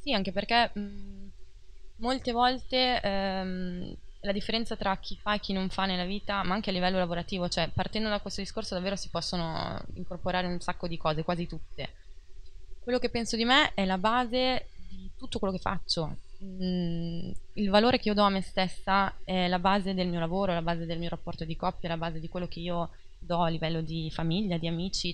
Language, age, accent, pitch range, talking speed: Italian, 20-39, native, 170-195 Hz, 210 wpm